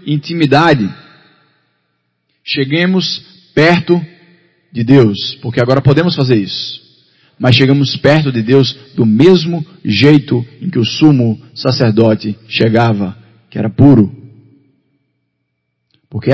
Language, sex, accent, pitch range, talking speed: Portuguese, male, Brazilian, 125-170 Hz, 105 wpm